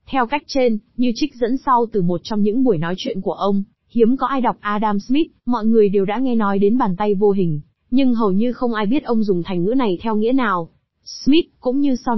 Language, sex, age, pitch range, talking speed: Vietnamese, female, 20-39, 200-250 Hz, 250 wpm